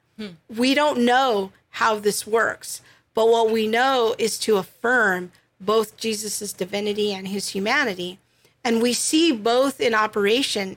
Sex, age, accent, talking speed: female, 50-69, American, 140 wpm